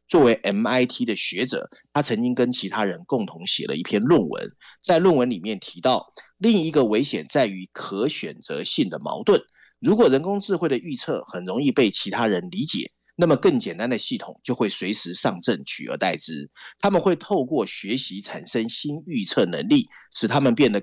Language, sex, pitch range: Chinese, male, 135-220 Hz